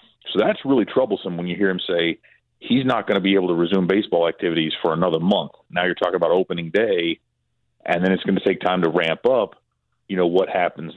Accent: American